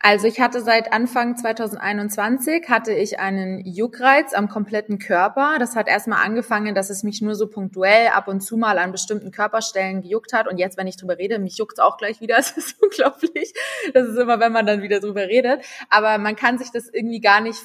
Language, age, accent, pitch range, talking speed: German, 20-39, German, 195-230 Hz, 220 wpm